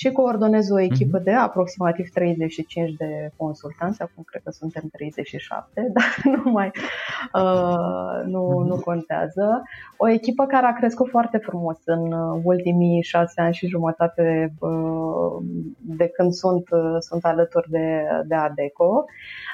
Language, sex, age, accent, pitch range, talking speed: Romanian, female, 20-39, native, 170-205 Hz, 125 wpm